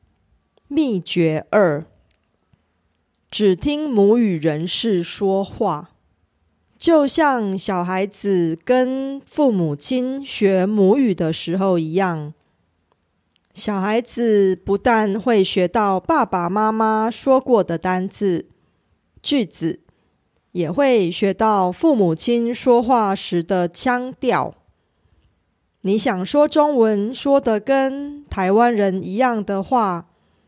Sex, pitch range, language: female, 175-250 Hz, Korean